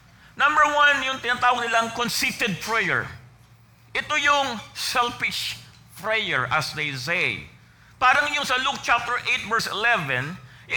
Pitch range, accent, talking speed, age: 190-280 Hz, Filipino, 125 wpm, 50-69